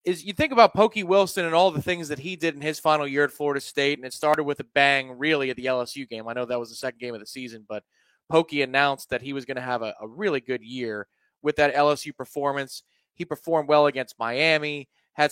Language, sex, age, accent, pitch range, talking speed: English, male, 20-39, American, 135-185 Hz, 255 wpm